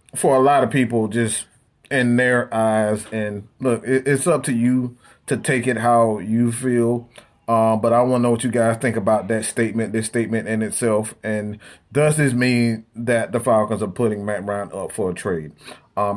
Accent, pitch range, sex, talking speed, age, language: American, 110-140 Hz, male, 200 wpm, 30-49, English